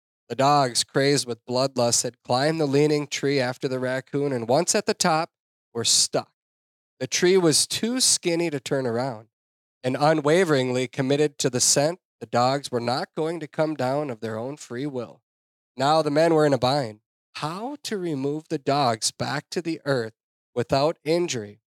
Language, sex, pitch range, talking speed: English, male, 120-155 Hz, 180 wpm